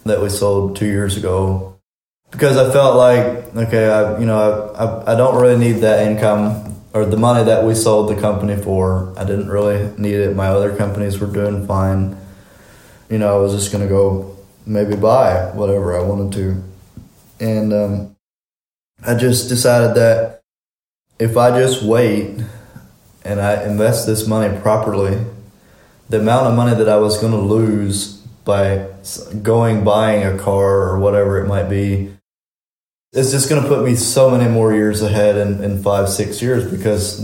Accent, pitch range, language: American, 100-115 Hz, English